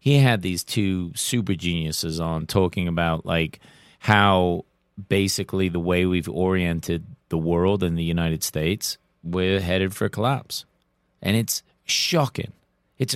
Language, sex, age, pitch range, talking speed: English, male, 30-49, 90-115 Hz, 140 wpm